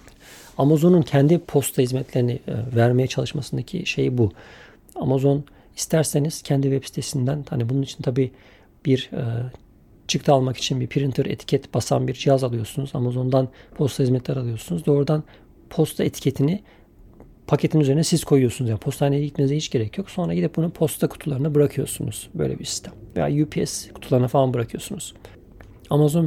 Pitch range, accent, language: 125-155 Hz, native, Turkish